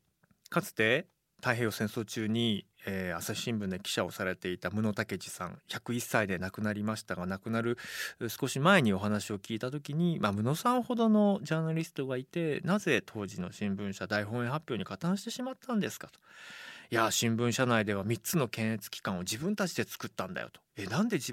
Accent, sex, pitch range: native, male, 105-175 Hz